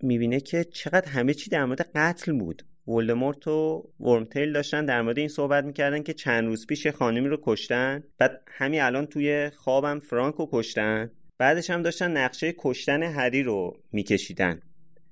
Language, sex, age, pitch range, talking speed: Persian, male, 30-49, 105-155 Hz, 165 wpm